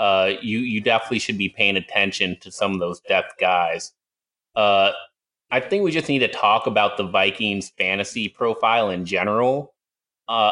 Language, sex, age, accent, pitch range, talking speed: English, male, 30-49, American, 100-120 Hz, 170 wpm